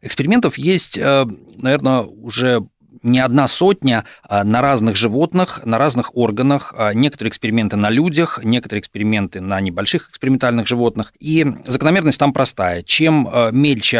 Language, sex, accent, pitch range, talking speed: Russian, male, native, 110-145 Hz, 125 wpm